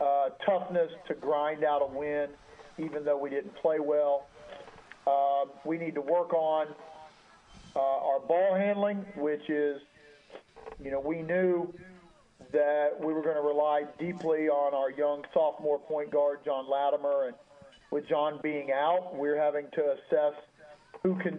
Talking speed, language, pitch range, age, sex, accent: 155 wpm, English, 145-165 Hz, 40-59, male, American